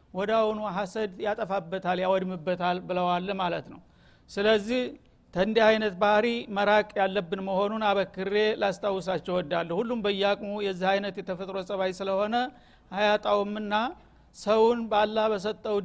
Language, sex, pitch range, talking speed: Amharic, male, 195-220 Hz, 105 wpm